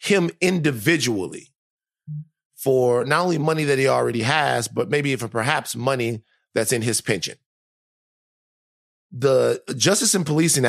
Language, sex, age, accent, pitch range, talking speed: English, male, 30-49, American, 110-155 Hz, 130 wpm